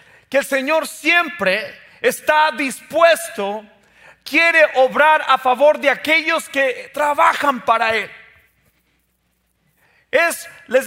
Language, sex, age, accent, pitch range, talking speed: Spanish, male, 40-59, Mexican, 240-295 Hz, 100 wpm